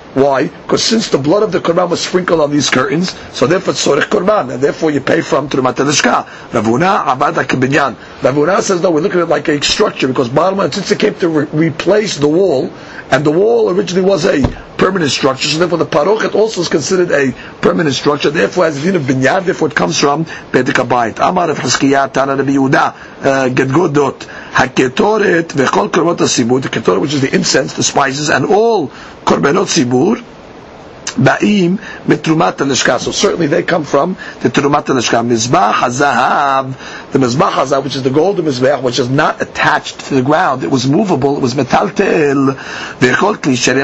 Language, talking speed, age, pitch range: English, 175 wpm, 50-69, 135-185 Hz